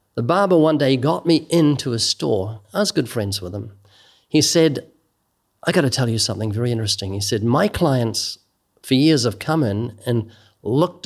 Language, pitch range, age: English, 105-140 Hz, 50-69